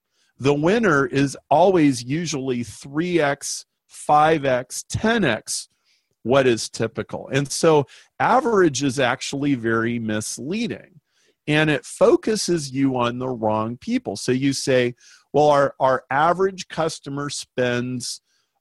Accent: American